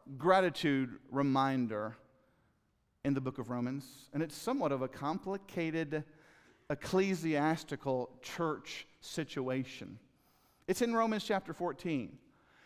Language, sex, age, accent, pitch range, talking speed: English, male, 50-69, American, 140-185 Hz, 100 wpm